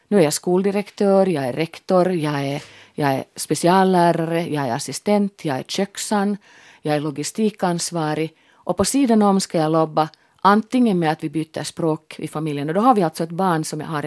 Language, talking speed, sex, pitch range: Finnish, 190 wpm, female, 150-195 Hz